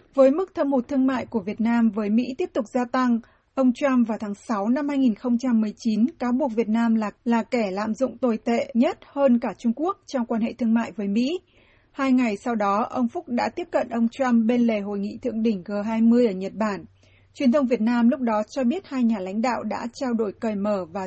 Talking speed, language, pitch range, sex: 240 wpm, Vietnamese, 215-260 Hz, female